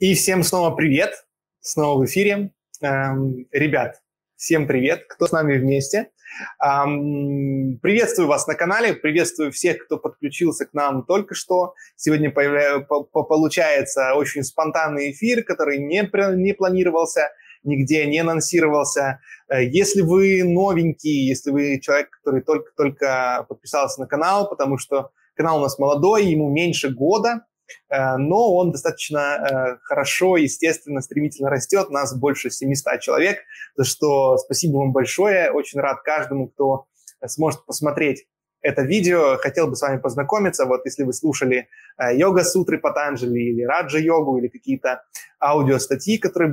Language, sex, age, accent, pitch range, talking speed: Russian, male, 20-39, native, 135-175 Hz, 130 wpm